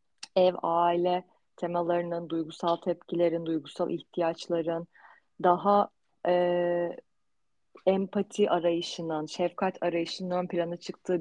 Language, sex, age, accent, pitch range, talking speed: Turkish, female, 30-49, native, 170-190 Hz, 85 wpm